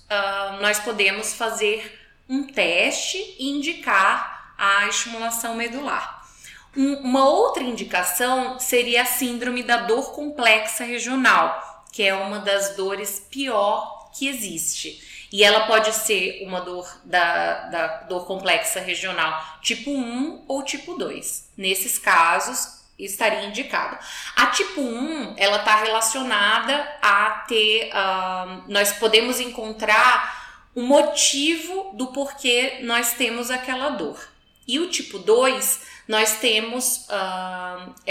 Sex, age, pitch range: female, 20-39, 200-265 Hz